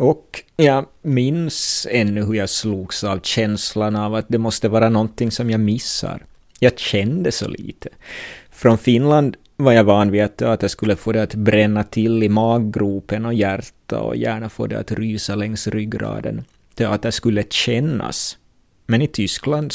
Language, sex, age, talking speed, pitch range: Swedish, male, 30-49, 170 wpm, 105-115 Hz